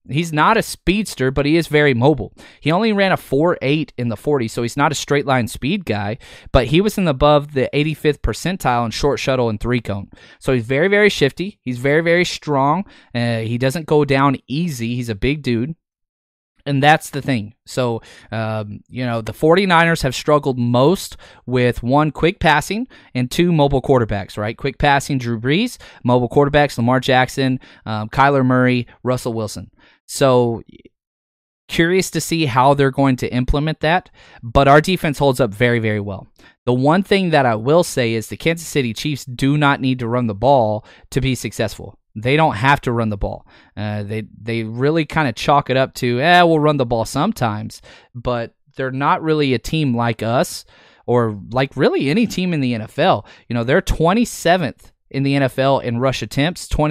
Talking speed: 190 wpm